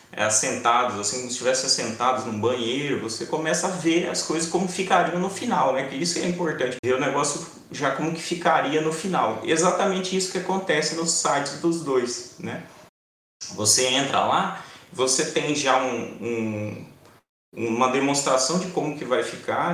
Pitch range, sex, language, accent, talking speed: 115-160 Hz, male, Portuguese, Brazilian, 165 wpm